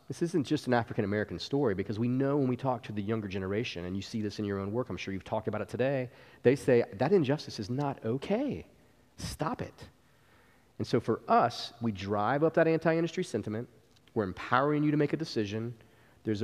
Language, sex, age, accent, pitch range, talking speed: English, male, 30-49, American, 105-130 Hz, 210 wpm